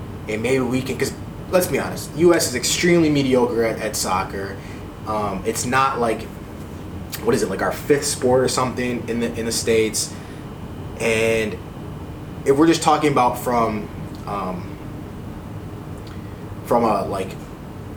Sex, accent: male, American